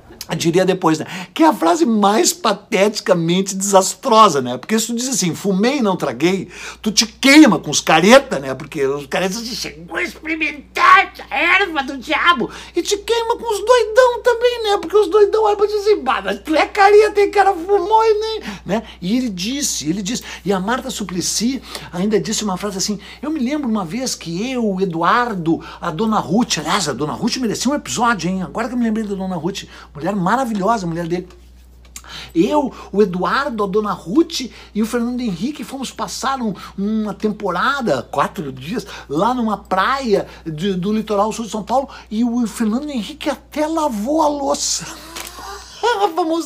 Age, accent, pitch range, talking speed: 60-79, Brazilian, 175-275 Hz, 185 wpm